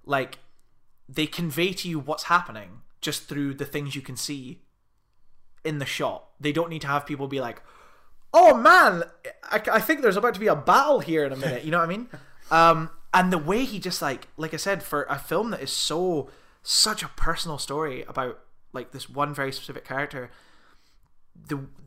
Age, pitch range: 20-39, 140-185 Hz